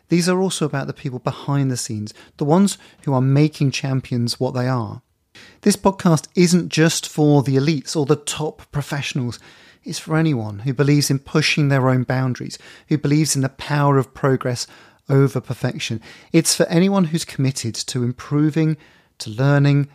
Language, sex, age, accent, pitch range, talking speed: English, male, 30-49, British, 120-155 Hz, 170 wpm